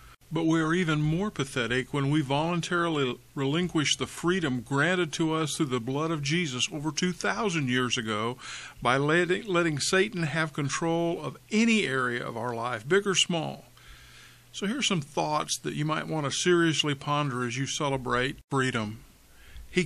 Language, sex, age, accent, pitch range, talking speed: English, male, 50-69, American, 135-175 Hz, 170 wpm